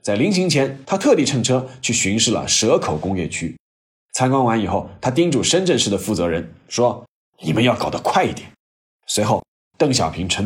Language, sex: Chinese, male